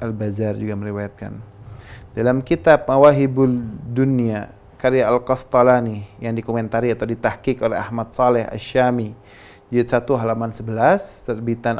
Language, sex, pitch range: Indonesian, male, 110-125 Hz